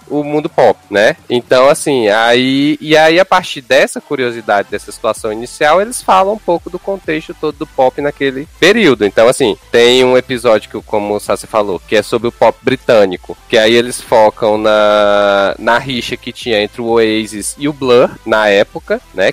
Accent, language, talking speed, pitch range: Brazilian, Portuguese, 190 wpm, 105-135 Hz